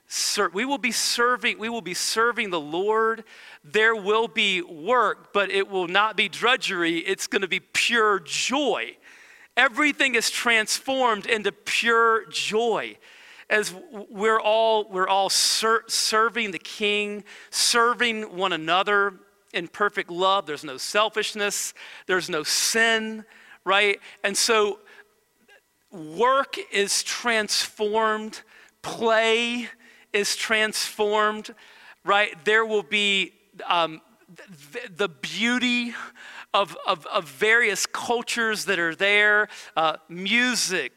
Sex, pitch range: male, 195-240 Hz